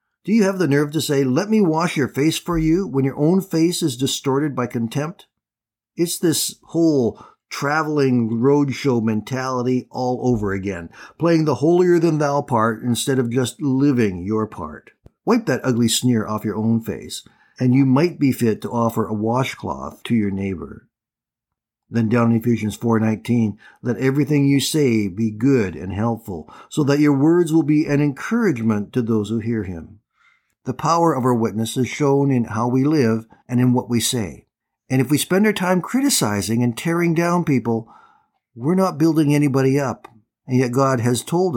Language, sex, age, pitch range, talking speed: English, male, 50-69, 110-145 Hz, 185 wpm